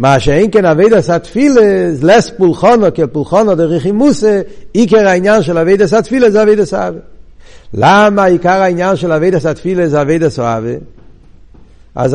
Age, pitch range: 60-79, 125-175 Hz